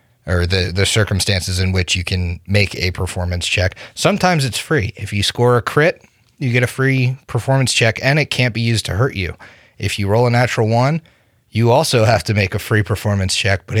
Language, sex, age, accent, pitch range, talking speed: English, male, 30-49, American, 95-120 Hz, 215 wpm